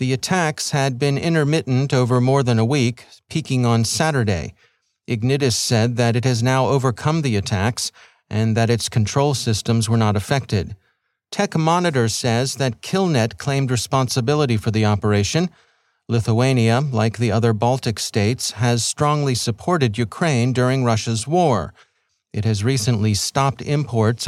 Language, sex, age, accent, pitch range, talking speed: English, male, 40-59, American, 115-140 Hz, 145 wpm